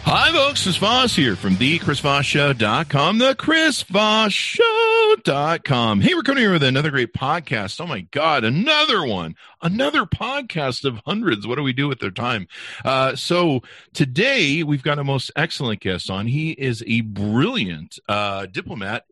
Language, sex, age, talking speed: English, male, 40-59, 155 wpm